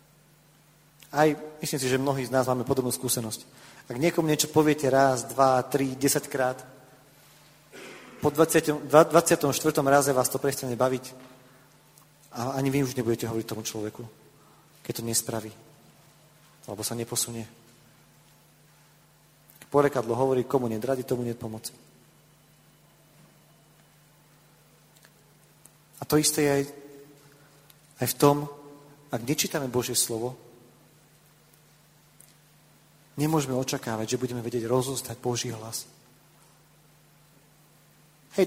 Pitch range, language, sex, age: 125-150 Hz, Slovak, male, 40-59